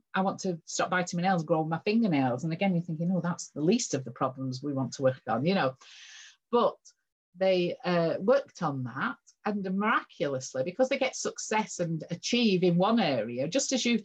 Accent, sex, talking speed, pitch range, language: British, female, 205 wpm, 150-210 Hz, English